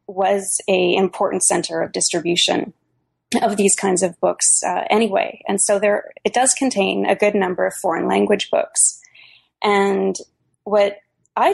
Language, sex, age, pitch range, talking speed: English, female, 20-39, 165-205 Hz, 150 wpm